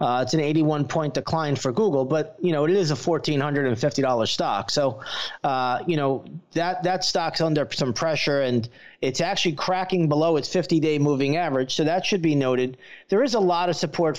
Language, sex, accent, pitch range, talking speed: English, male, American, 140-170 Hz, 205 wpm